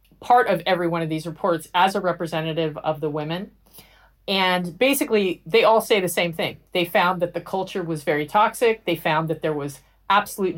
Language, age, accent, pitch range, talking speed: English, 40-59, American, 170-220 Hz, 200 wpm